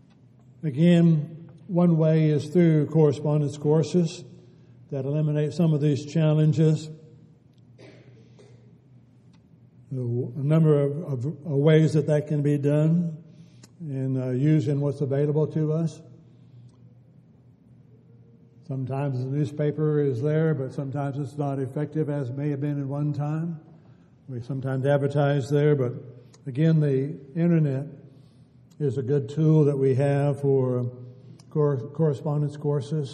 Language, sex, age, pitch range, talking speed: English, male, 60-79, 135-155 Hz, 115 wpm